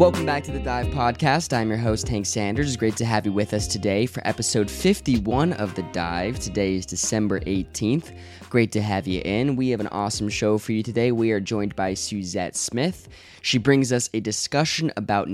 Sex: male